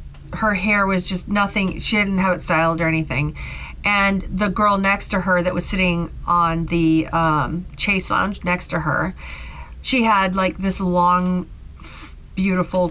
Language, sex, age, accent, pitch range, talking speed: English, female, 40-59, American, 165-195 Hz, 165 wpm